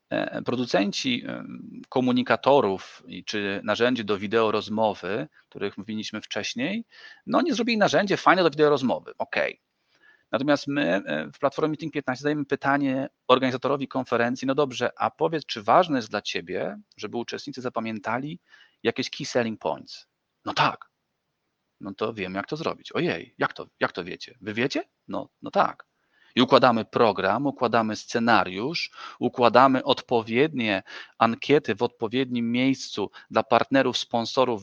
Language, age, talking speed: Polish, 40-59, 135 wpm